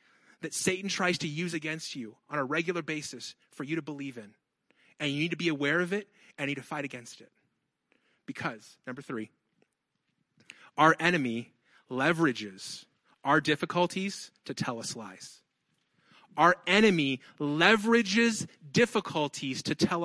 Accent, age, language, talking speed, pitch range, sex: American, 30-49, English, 145 wpm, 165-230 Hz, male